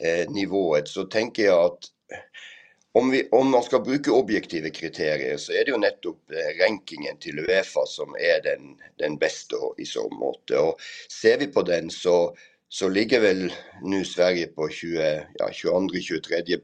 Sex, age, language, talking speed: male, 60-79, Swedish, 150 wpm